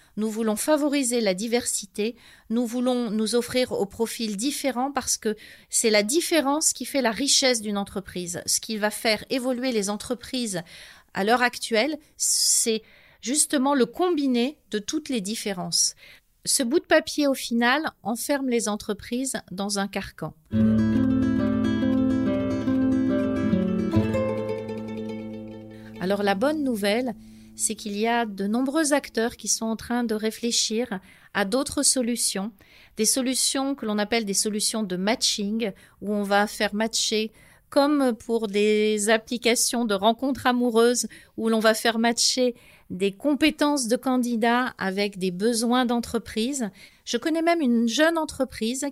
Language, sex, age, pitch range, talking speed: French, female, 40-59, 205-260 Hz, 140 wpm